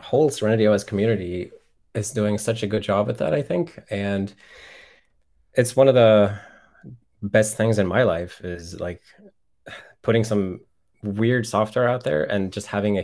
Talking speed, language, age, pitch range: 165 wpm, English, 20-39, 95-115 Hz